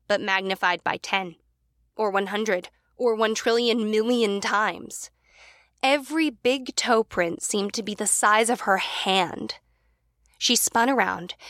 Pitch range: 175-250 Hz